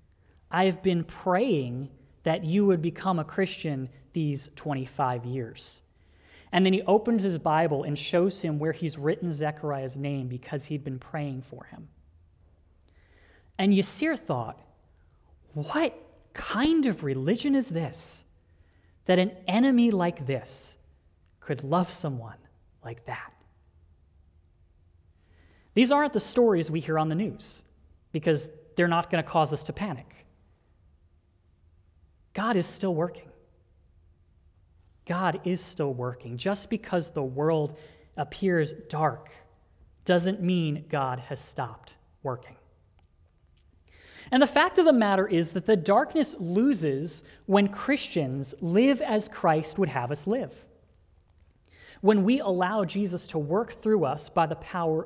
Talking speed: 130 wpm